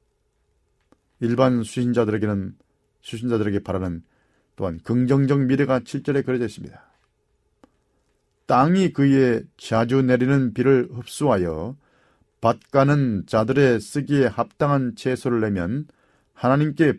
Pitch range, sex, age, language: 105-135 Hz, male, 40-59, Korean